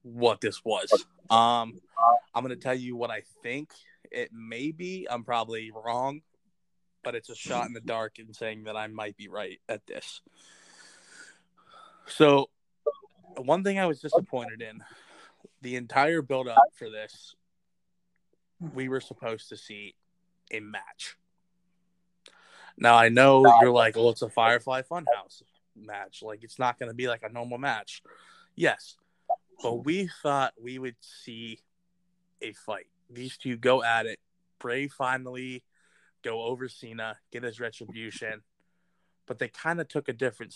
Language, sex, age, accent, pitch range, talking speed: English, male, 20-39, American, 115-150 Hz, 155 wpm